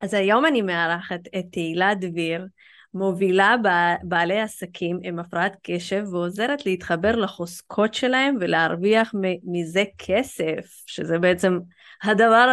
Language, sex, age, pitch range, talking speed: Hebrew, female, 20-39, 180-220 Hz, 110 wpm